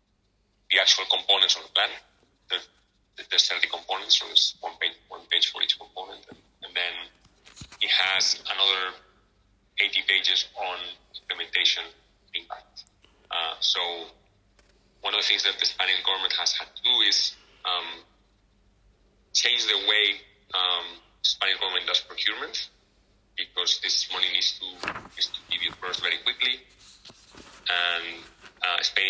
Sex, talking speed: male, 135 wpm